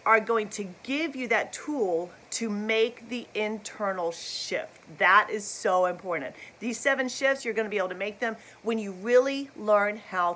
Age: 40-59